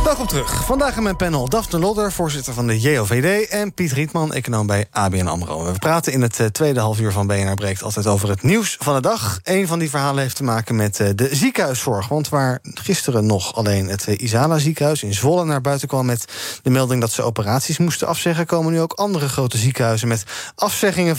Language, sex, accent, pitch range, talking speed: Dutch, male, Dutch, 110-160 Hz, 215 wpm